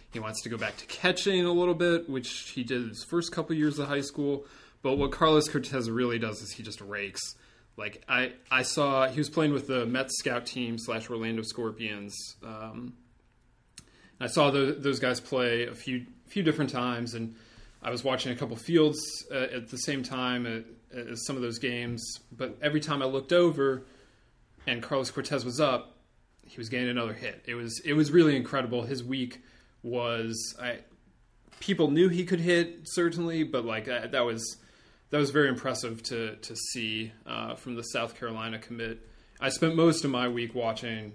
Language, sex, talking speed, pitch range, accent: English, male, 190 wpm, 115-140 Hz, American